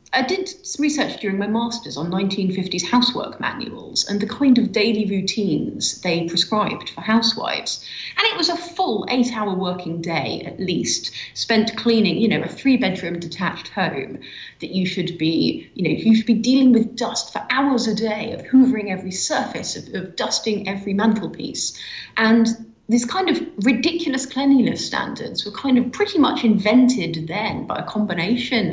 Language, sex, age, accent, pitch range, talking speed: English, female, 30-49, British, 175-235 Hz, 170 wpm